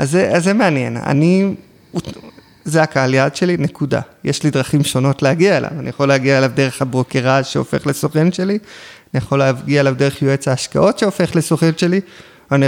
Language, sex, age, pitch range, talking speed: Hebrew, male, 20-39, 130-170 Hz, 175 wpm